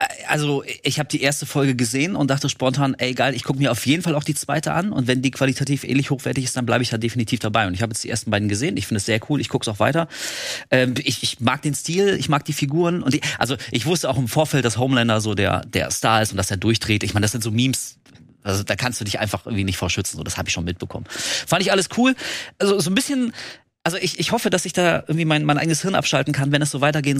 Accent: German